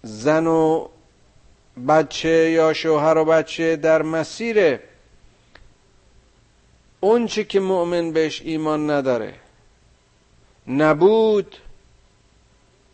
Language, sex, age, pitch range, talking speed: Persian, male, 50-69, 140-170 Hz, 80 wpm